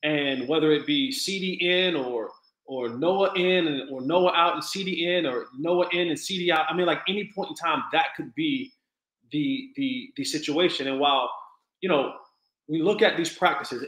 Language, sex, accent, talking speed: English, male, American, 195 wpm